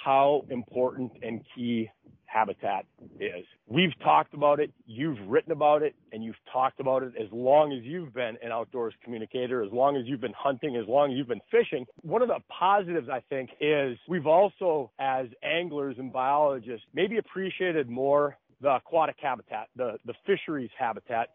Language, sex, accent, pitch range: English, male, American, 130-155 Hz